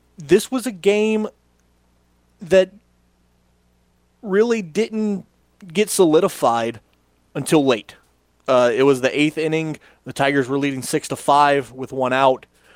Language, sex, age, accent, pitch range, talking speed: English, male, 30-49, American, 120-150 Hz, 125 wpm